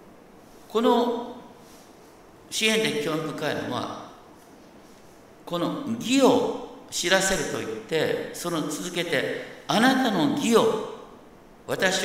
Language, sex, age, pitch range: Japanese, male, 50-69, 195-255 Hz